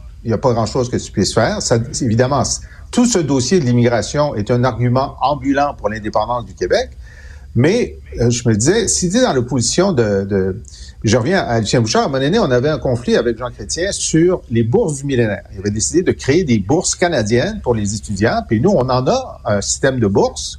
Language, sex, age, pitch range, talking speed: French, male, 50-69, 110-170 Hz, 225 wpm